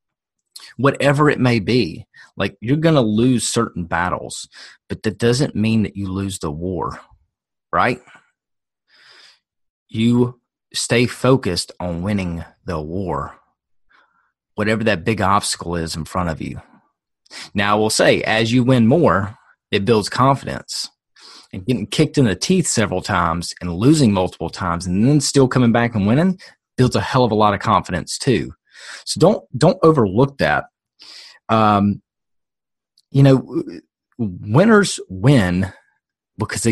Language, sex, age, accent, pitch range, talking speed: English, male, 30-49, American, 100-130 Hz, 140 wpm